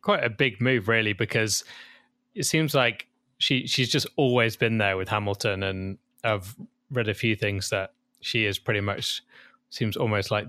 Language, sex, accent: English, male, British